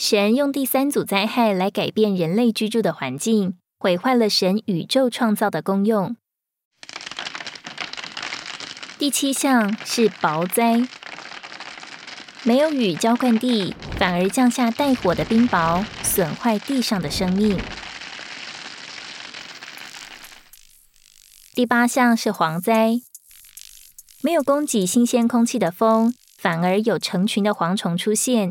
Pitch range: 190-240 Hz